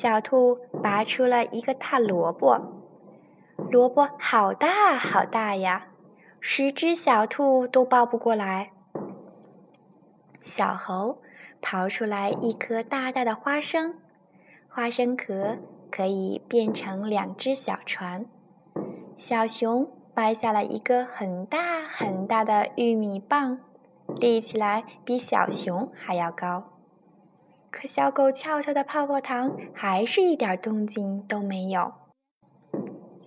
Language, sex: Chinese, female